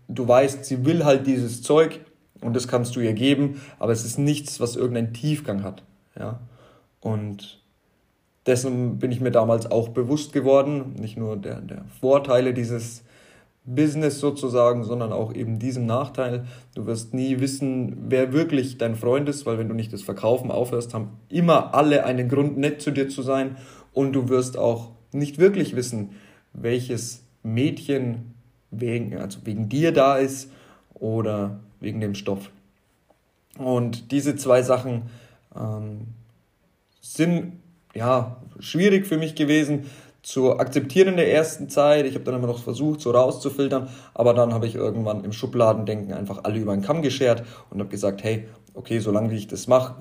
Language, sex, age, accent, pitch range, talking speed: German, male, 20-39, German, 110-140 Hz, 160 wpm